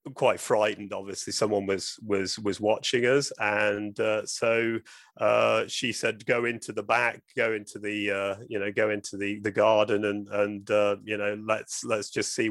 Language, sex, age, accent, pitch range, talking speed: English, male, 30-49, British, 105-115 Hz, 185 wpm